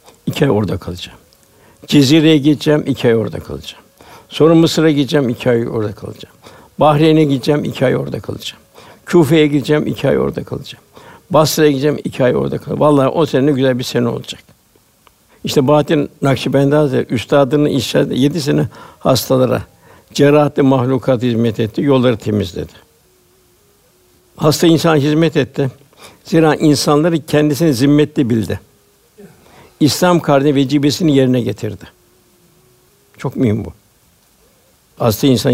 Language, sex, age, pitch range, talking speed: Turkish, male, 60-79, 130-155 Hz, 125 wpm